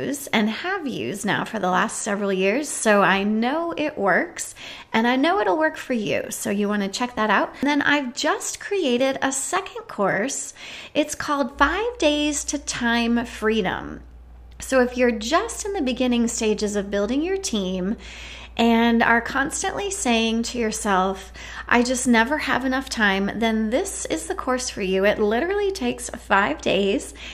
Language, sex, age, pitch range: English, female, 30-49, 205-295 Hz